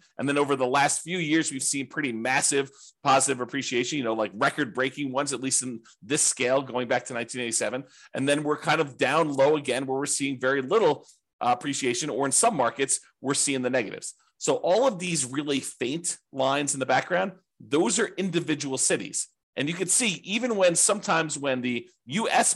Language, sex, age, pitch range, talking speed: English, male, 30-49, 130-160 Hz, 195 wpm